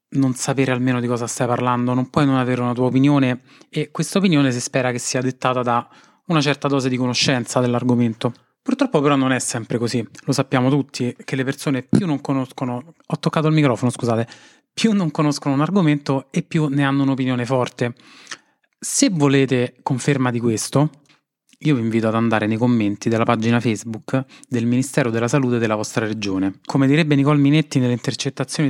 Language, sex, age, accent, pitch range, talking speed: Italian, male, 30-49, native, 120-145 Hz, 185 wpm